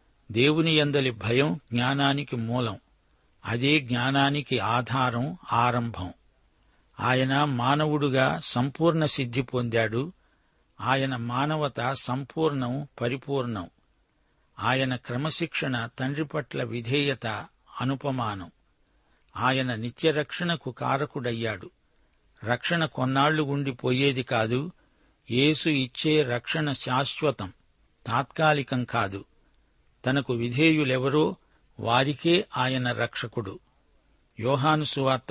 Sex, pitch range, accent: male, 120-145 Hz, native